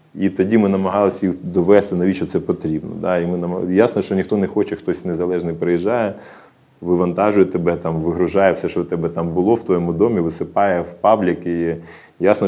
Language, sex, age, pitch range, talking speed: Ukrainian, male, 20-39, 85-95 Hz, 185 wpm